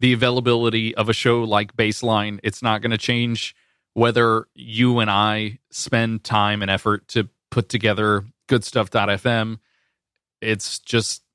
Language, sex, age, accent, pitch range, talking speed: English, male, 20-39, American, 110-130 Hz, 135 wpm